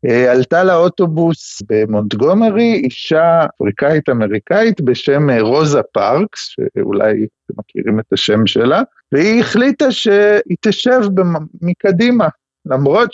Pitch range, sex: 130-190 Hz, male